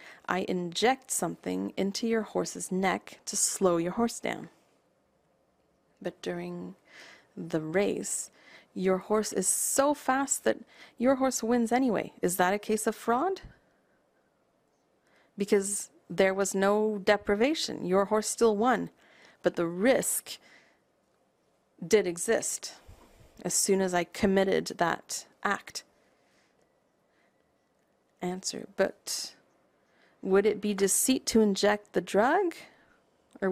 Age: 30-49